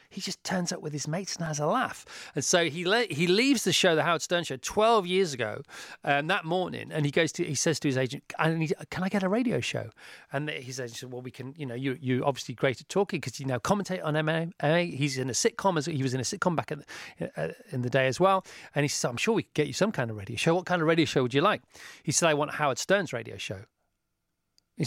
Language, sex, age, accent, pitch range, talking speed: English, male, 40-59, British, 135-180 Hz, 275 wpm